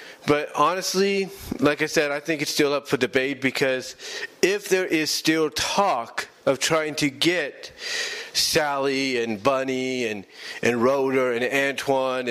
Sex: male